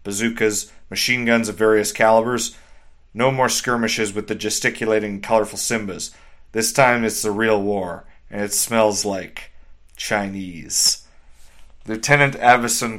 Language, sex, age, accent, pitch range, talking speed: English, male, 30-49, American, 100-115 Hz, 125 wpm